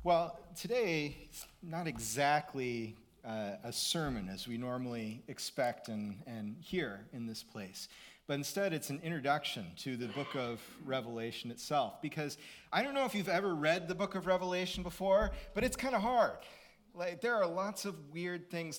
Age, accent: 40-59, American